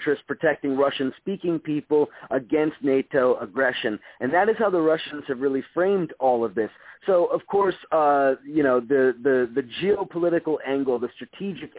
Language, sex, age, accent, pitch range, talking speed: English, male, 40-59, American, 130-165 Hz, 160 wpm